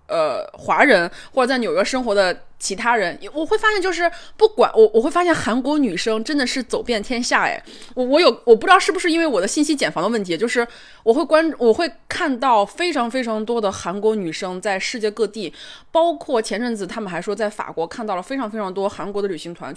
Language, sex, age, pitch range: Chinese, female, 20-39, 200-305 Hz